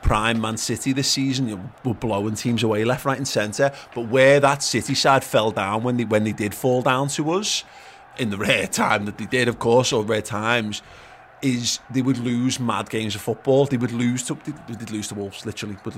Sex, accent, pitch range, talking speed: male, British, 110-135 Hz, 235 wpm